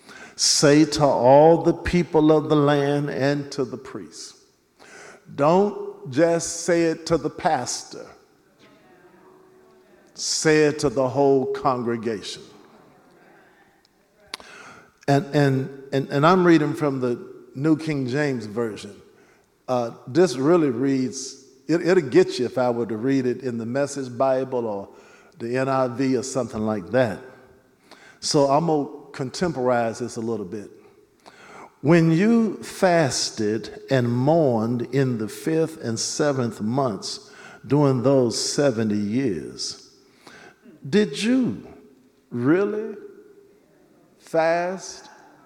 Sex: male